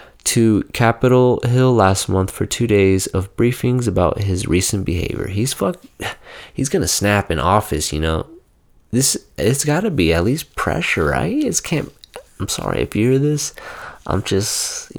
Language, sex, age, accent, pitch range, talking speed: English, male, 20-39, American, 90-115 Hz, 165 wpm